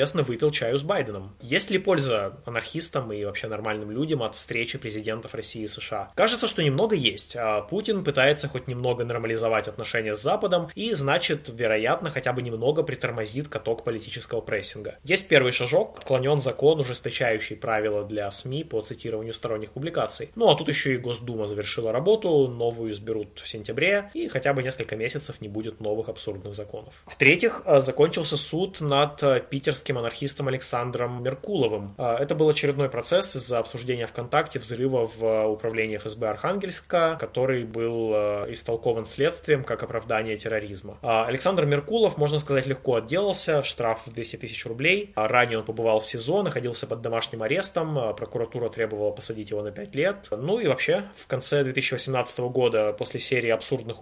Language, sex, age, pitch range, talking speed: Russian, male, 20-39, 110-145 Hz, 155 wpm